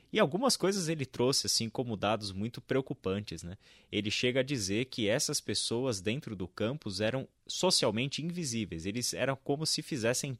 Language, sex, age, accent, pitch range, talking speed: Portuguese, male, 20-39, Brazilian, 105-135 Hz, 165 wpm